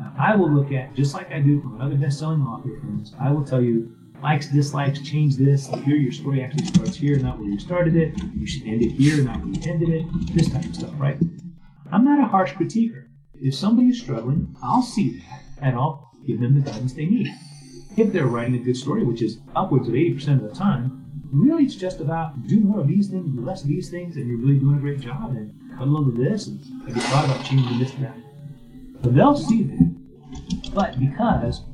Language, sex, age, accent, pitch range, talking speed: English, male, 40-59, American, 125-160 Hz, 230 wpm